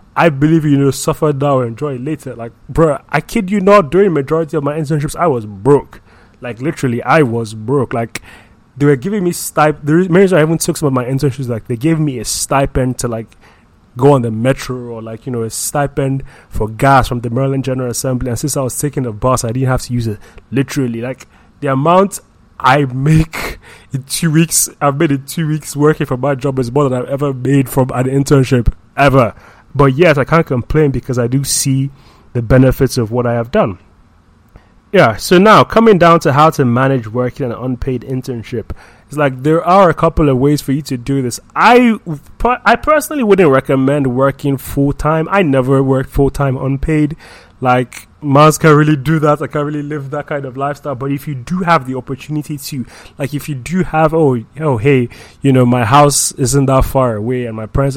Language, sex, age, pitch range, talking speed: English, male, 20-39, 125-150 Hz, 215 wpm